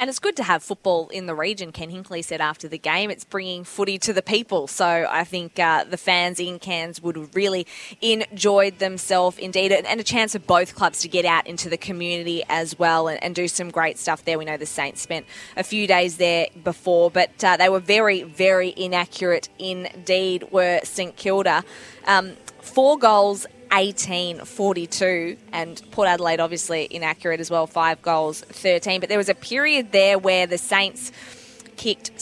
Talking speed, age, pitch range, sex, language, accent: 185 wpm, 20-39, 170-195 Hz, female, English, Australian